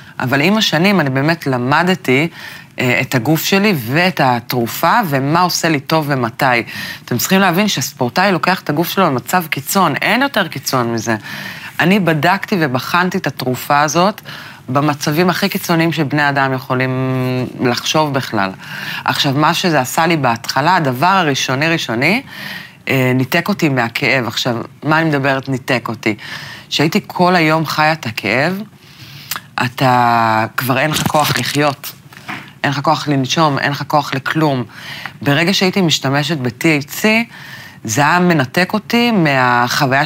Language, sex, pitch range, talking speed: Hebrew, female, 130-175 Hz, 140 wpm